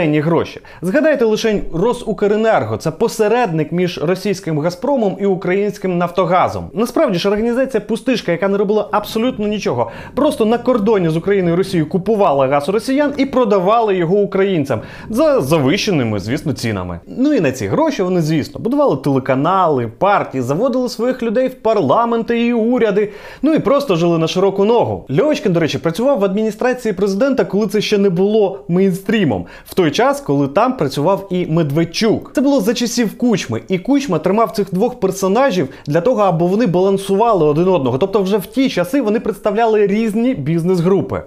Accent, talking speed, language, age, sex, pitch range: native, 160 wpm, Ukrainian, 30-49, male, 175-230 Hz